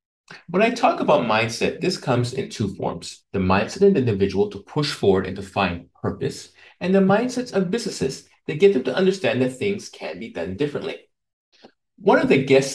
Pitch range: 115-190 Hz